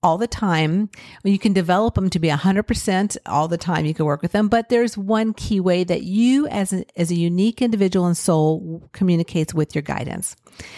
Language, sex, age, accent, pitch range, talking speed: English, female, 50-69, American, 170-220 Hz, 215 wpm